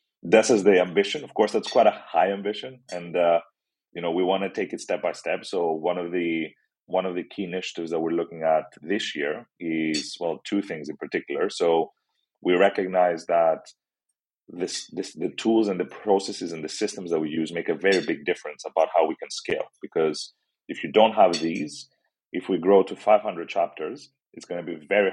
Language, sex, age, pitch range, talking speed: English, male, 30-49, 80-95 Hz, 215 wpm